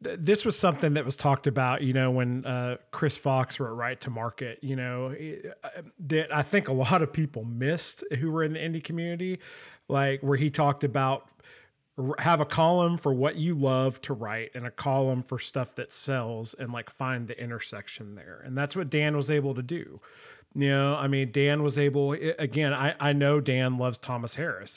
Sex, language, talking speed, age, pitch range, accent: male, English, 210 wpm, 30-49, 130-150 Hz, American